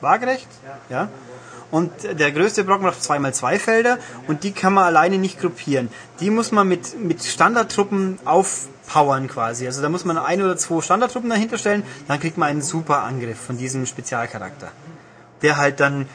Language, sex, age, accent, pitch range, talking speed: German, male, 30-49, German, 140-185 Hz, 170 wpm